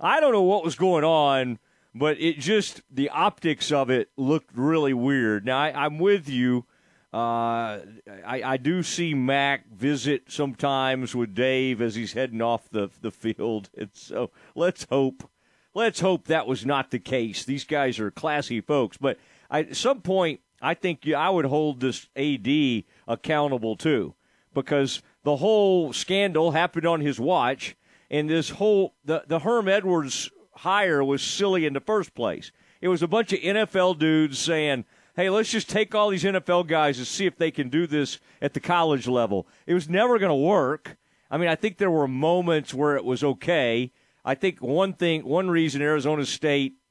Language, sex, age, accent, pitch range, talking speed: English, male, 40-59, American, 130-175 Hz, 185 wpm